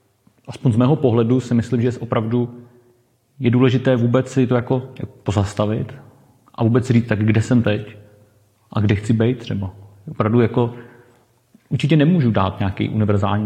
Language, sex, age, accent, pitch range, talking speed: Czech, male, 30-49, native, 105-125 Hz, 150 wpm